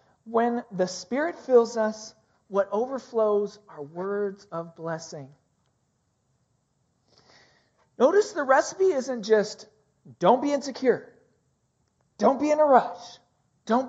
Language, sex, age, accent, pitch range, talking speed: English, male, 40-59, American, 150-230 Hz, 110 wpm